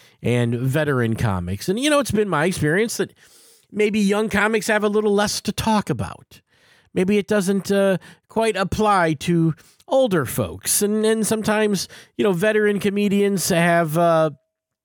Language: English